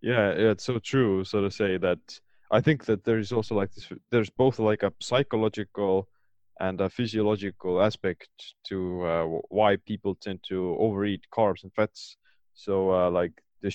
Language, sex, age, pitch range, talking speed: English, male, 20-39, 95-110 Hz, 170 wpm